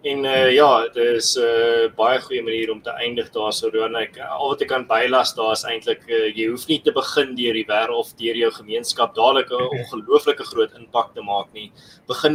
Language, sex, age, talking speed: English, male, 20-39, 215 wpm